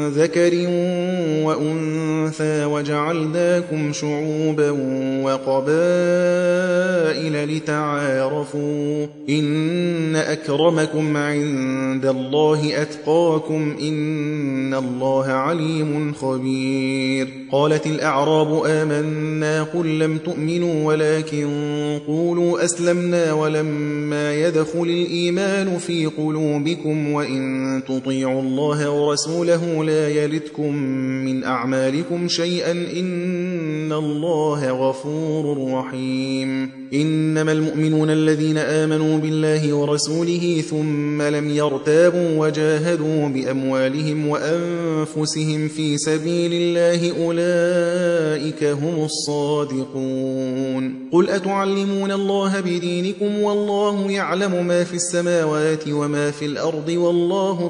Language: Persian